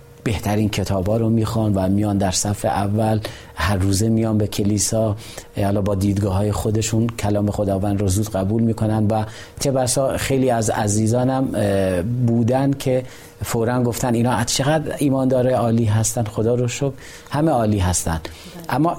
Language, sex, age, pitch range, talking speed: Persian, male, 40-59, 105-125 Hz, 150 wpm